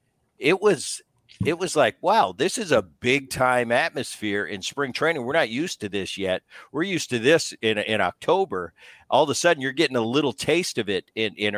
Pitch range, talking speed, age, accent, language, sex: 105-135 Hz, 215 wpm, 50-69, American, English, male